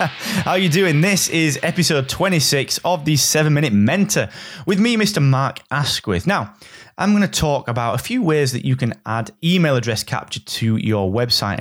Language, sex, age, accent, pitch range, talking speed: English, male, 20-39, British, 110-150 Hz, 180 wpm